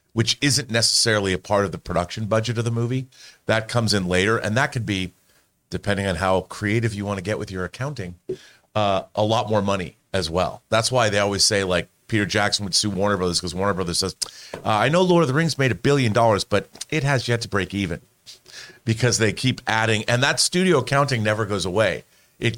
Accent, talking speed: American, 225 wpm